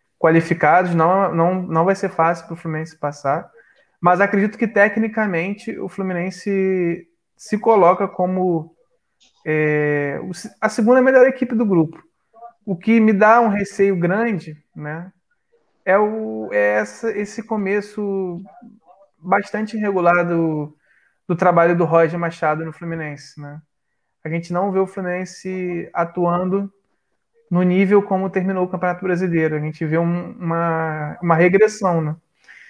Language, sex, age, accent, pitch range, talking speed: Portuguese, male, 20-39, Brazilian, 165-200 Hz, 130 wpm